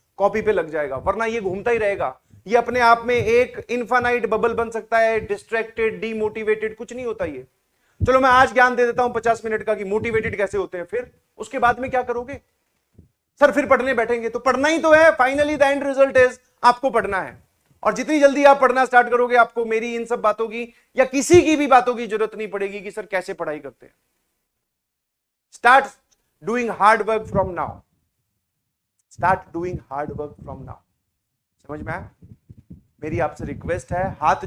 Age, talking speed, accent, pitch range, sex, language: 30-49, 180 wpm, native, 200-250 Hz, male, Hindi